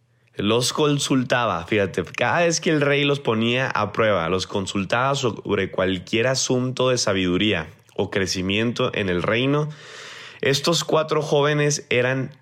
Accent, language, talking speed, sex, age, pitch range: Mexican, Spanish, 135 wpm, male, 20-39, 105-135 Hz